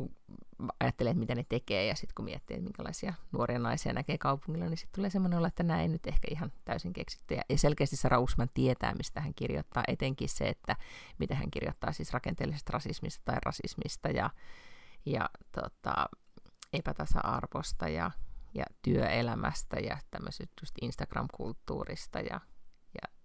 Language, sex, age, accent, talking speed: Finnish, female, 30-49, native, 145 wpm